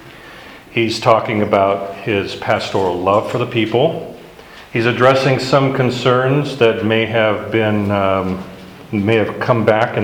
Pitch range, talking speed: 110-140 Hz, 135 wpm